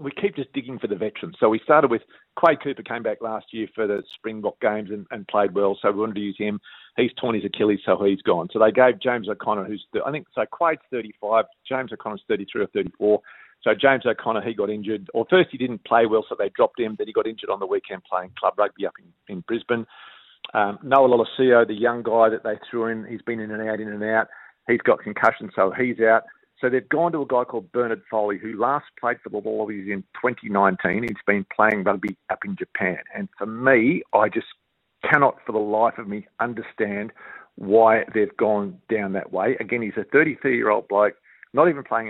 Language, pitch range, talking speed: English, 105-130 Hz, 225 wpm